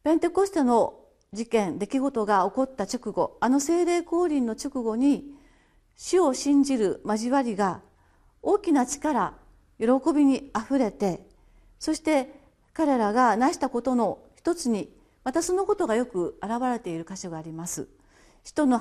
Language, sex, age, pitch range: Japanese, female, 40-59, 215-300 Hz